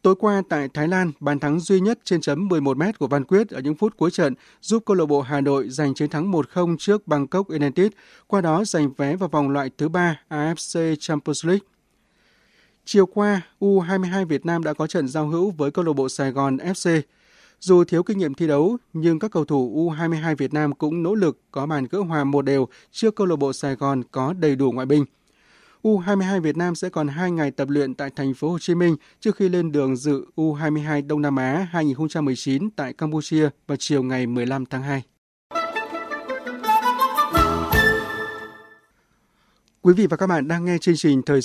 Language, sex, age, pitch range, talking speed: Vietnamese, male, 20-39, 140-190 Hz, 200 wpm